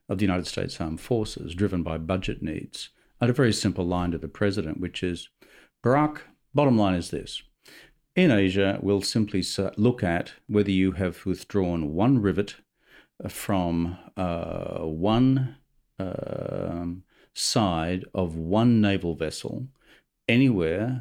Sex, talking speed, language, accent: male, 135 wpm, English, Australian